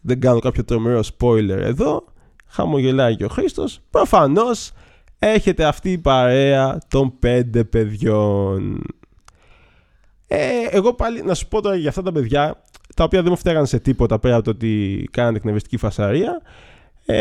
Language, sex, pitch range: Greek, male, 120-185 Hz